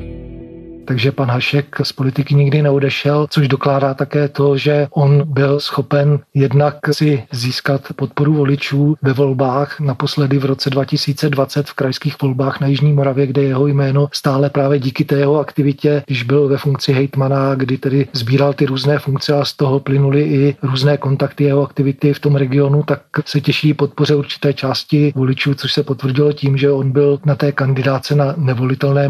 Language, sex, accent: Czech, male, native